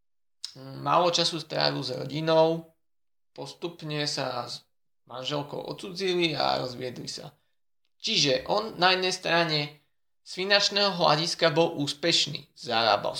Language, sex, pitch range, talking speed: Slovak, male, 135-170 Hz, 110 wpm